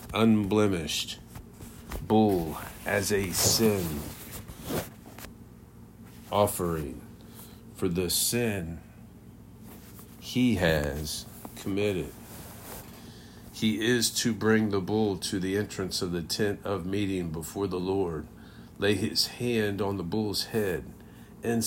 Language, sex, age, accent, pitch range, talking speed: English, male, 50-69, American, 90-110 Hz, 100 wpm